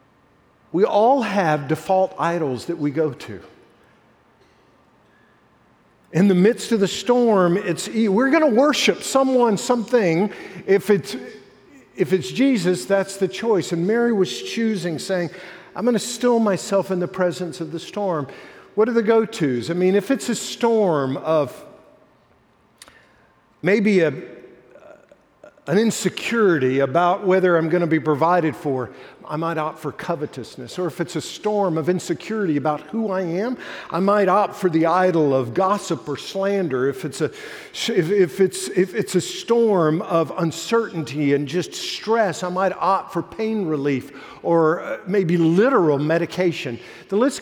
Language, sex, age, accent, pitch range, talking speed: English, male, 50-69, American, 165-205 Hz, 155 wpm